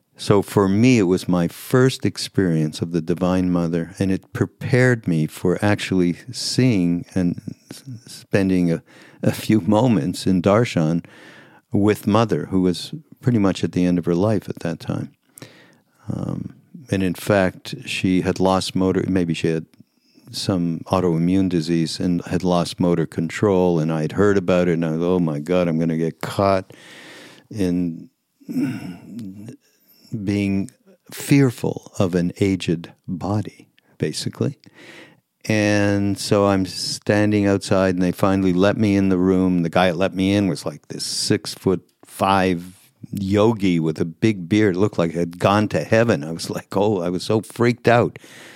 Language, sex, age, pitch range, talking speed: English, male, 60-79, 90-105 Hz, 165 wpm